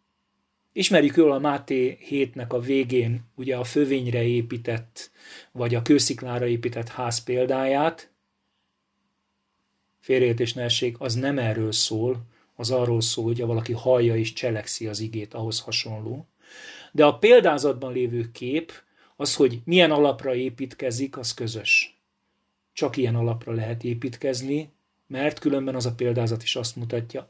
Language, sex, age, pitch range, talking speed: Hungarian, male, 40-59, 115-135 Hz, 130 wpm